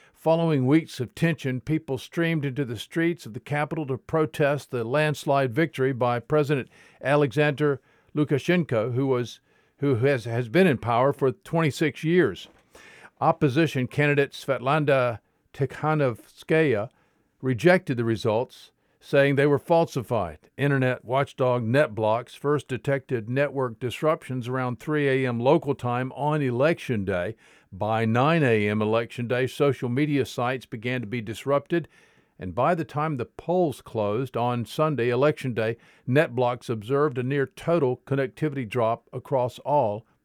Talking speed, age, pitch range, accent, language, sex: 135 wpm, 50-69, 125-155 Hz, American, English, male